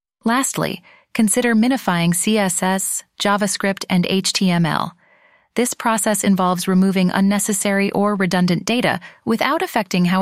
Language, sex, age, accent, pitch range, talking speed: English, female, 30-49, American, 185-230 Hz, 105 wpm